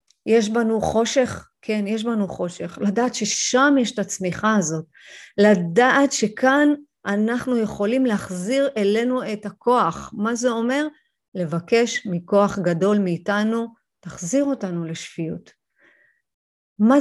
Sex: female